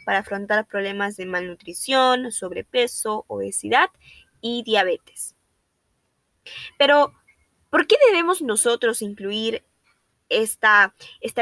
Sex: female